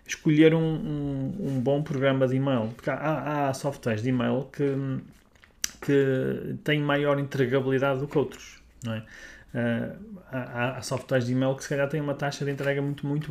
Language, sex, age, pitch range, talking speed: Portuguese, male, 20-39, 125-155 Hz, 190 wpm